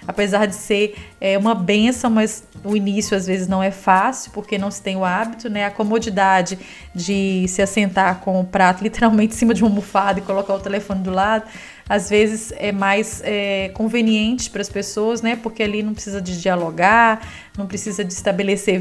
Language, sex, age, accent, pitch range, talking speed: Portuguese, female, 20-39, Brazilian, 200-230 Hz, 195 wpm